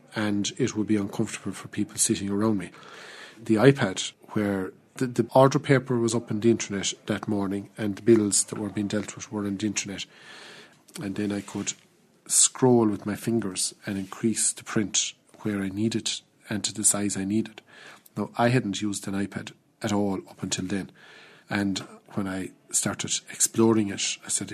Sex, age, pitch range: male, 40-59, 100-115 Hz